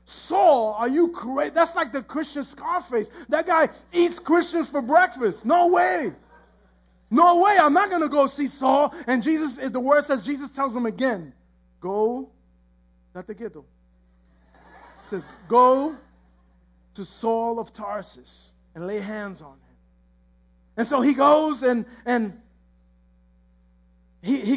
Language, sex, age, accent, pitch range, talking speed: English, male, 30-49, American, 190-280 Hz, 140 wpm